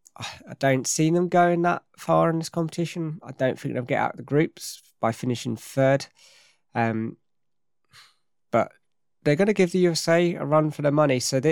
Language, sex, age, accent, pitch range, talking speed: English, male, 20-39, British, 120-150 Hz, 190 wpm